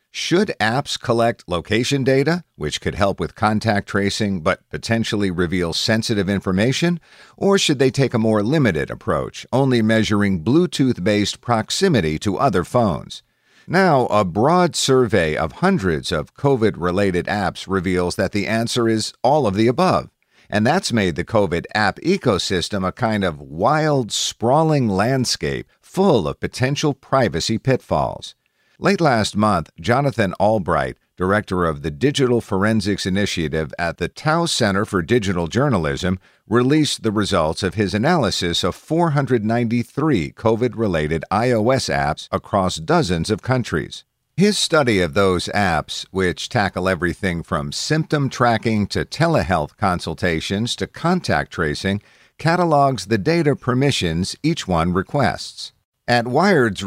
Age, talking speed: 50-69, 135 wpm